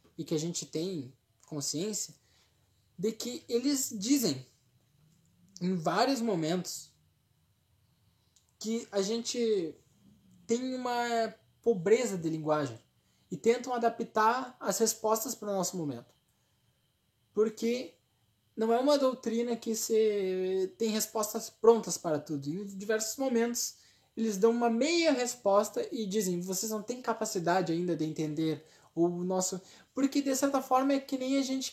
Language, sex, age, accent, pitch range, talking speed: Portuguese, male, 20-39, Brazilian, 160-235 Hz, 130 wpm